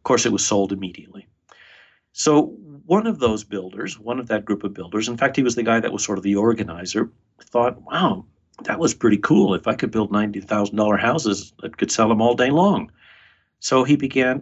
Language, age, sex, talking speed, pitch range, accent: English, 50-69, male, 210 wpm, 105-125 Hz, American